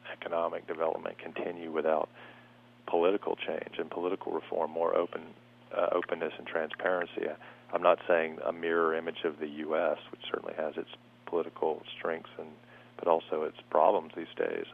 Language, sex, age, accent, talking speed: English, male, 40-59, American, 145 wpm